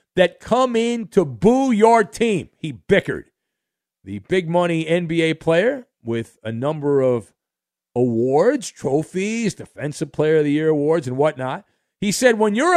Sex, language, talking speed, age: male, English, 145 wpm, 50-69